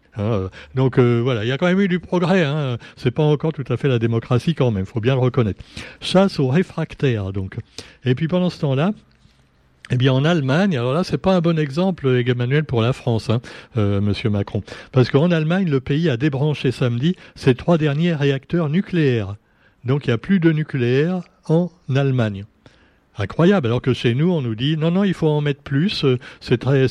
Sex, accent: male, French